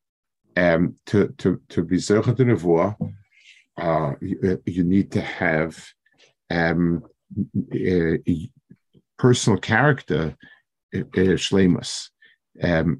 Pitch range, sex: 95-125 Hz, male